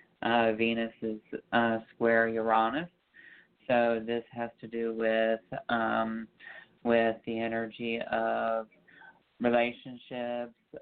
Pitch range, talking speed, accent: 115-120 Hz, 100 wpm, American